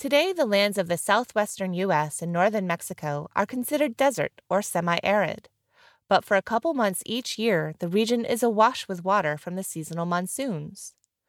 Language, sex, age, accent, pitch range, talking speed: English, female, 30-49, American, 170-240 Hz, 170 wpm